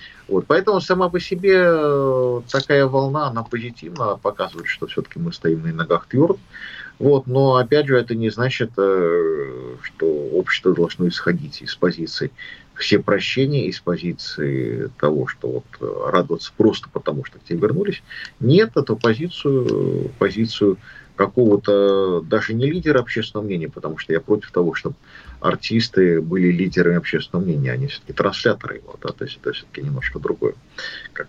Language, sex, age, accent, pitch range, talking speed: Russian, male, 50-69, native, 90-135 Hz, 145 wpm